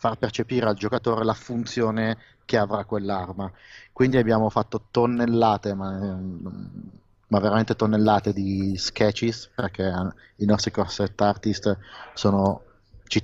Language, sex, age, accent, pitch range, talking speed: Italian, male, 30-49, native, 100-115 Hz, 120 wpm